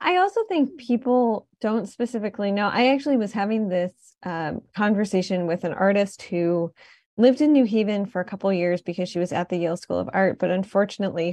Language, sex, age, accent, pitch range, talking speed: English, female, 10-29, American, 185-235 Hz, 200 wpm